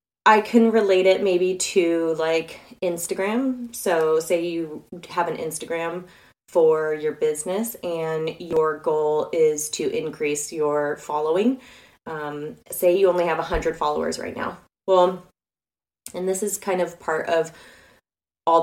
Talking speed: 140 wpm